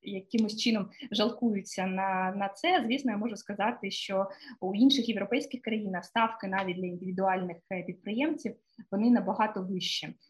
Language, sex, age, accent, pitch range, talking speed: Ukrainian, female, 20-39, native, 190-235 Hz, 135 wpm